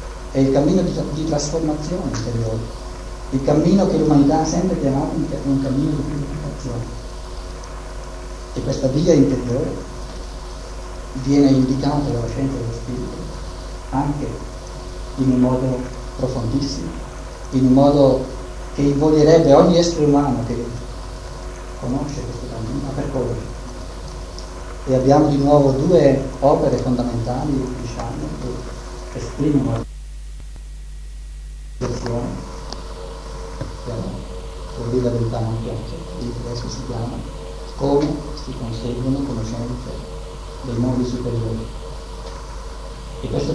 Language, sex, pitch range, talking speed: Italian, male, 90-140 Hz, 115 wpm